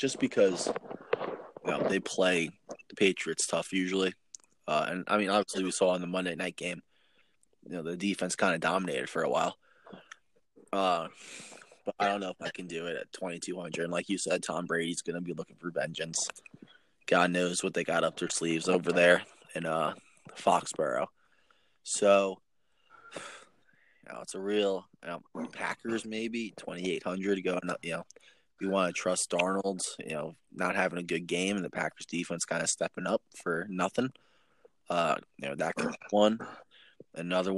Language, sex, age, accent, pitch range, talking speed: English, male, 20-39, American, 90-100 Hz, 180 wpm